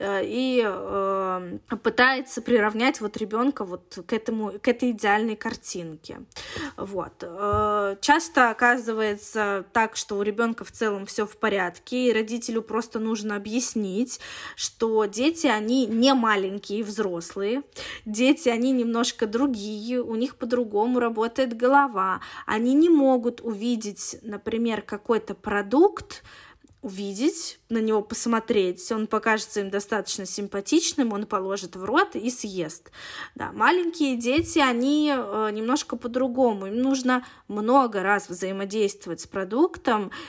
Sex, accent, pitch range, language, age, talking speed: female, native, 205-250 Hz, Russian, 20-39, 120 wpm